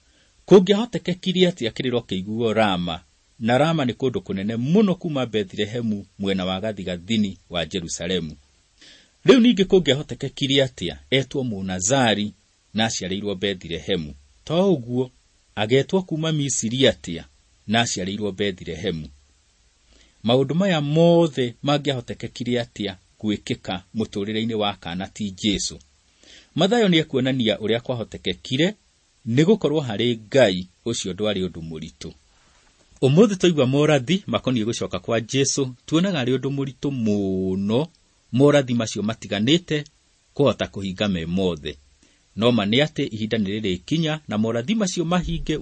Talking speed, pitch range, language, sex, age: 115 wpm, 95-150 Hz, English, male, 40-59